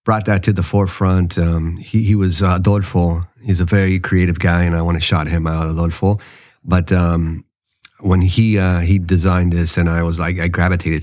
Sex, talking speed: male, 200 wpm